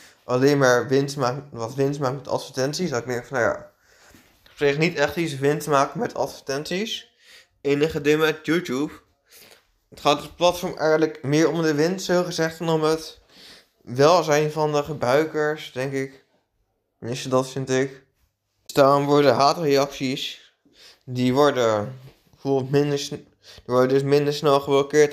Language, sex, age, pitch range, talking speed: Dutch, male, 20-39, 130-155 Hz, 155 wpm